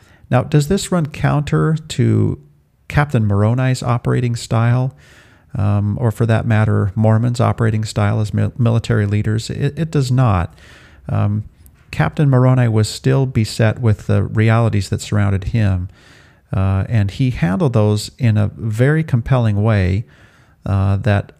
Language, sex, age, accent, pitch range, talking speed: English, male, 40-59, American, 100-125 Hz, 135 wpm